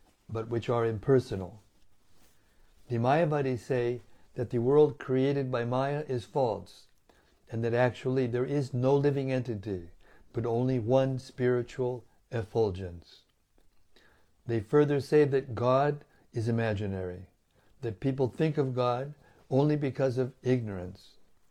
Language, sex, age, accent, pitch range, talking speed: English, male, 60-79, American, 100-130 Hz, 125 wpm